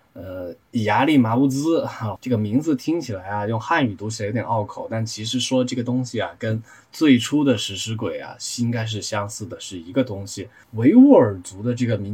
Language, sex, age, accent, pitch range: Chinese, male, 20-39, native, 105-130 Hz